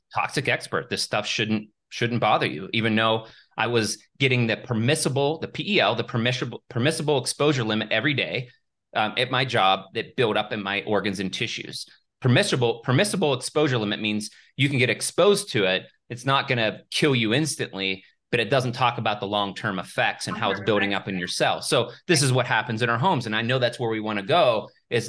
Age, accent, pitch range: 30-49, American, 105-130 Hz